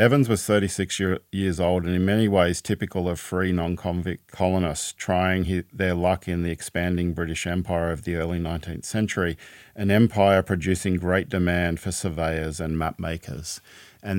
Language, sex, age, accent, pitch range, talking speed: English, male, 40-59, Australian, 85-100 Hz, 170 wpm